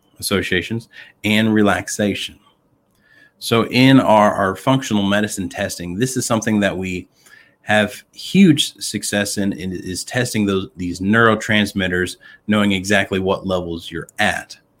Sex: male